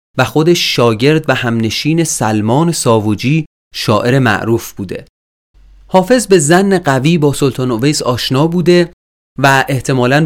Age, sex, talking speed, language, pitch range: 30-49, male, 125 wpm, Persian, 120-160 Hz